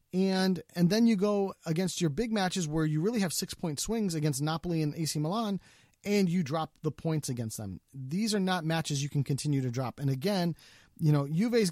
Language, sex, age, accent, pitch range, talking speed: English, male, 30-49, American, 135-175 Hz, 215 wpm